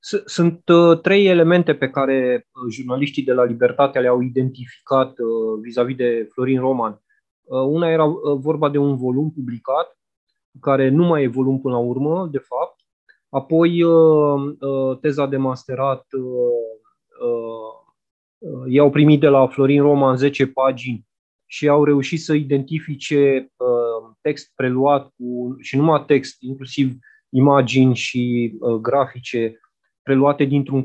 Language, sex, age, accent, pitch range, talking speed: Romanian, male, 20-39, native, 125-150 Hz, 115 wpm